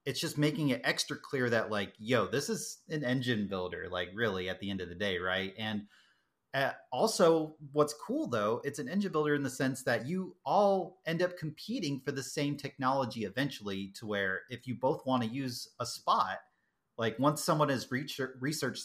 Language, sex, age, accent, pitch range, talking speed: English, male, 30-49, American, 105-150 Hz, 200 wpm